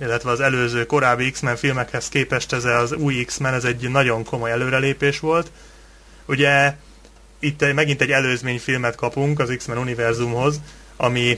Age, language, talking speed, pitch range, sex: 20-39, Hungarian, 140 wpm, 120-140 Hz, male